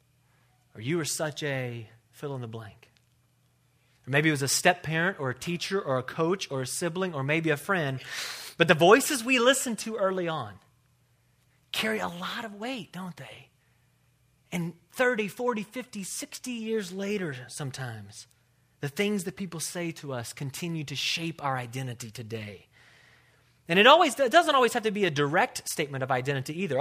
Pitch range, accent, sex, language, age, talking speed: 125-160 Hz, American, male, English, 30-49, 180 wpm